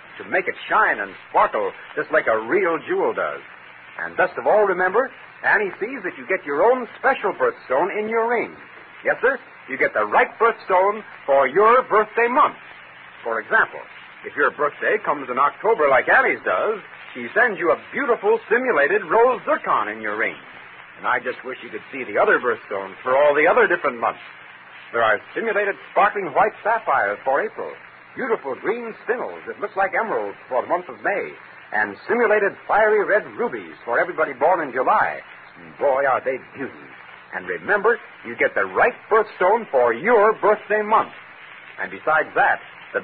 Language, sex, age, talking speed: English, male, 60-79, 180 wpm